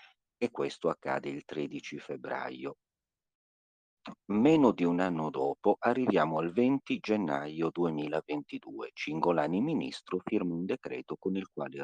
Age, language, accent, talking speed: 50-69, Italian, native, 120 wpm